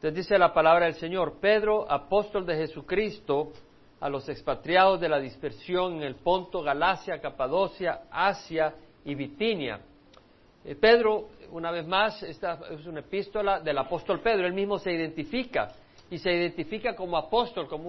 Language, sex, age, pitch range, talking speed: Spanish, male, 50-69, 145-180 Hz, 155 wpm